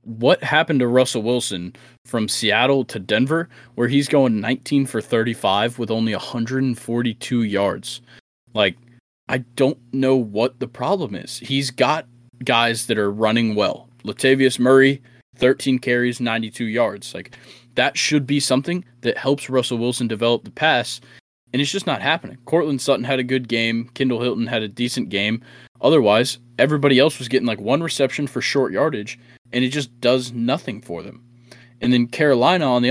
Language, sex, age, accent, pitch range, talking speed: English, male, 20-39, American, 115-135 Hz, 170 wpm